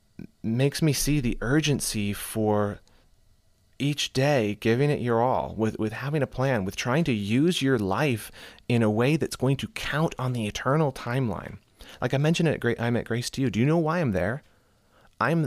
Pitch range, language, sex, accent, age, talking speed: 95-125 Hz, English, male, American, 30-49, 200 wpm